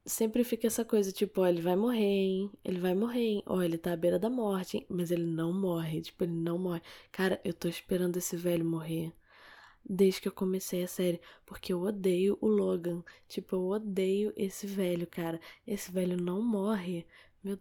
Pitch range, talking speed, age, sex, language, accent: 180-210 Hz, 200 wpm, 10-29, female, Portuguese, Brazilian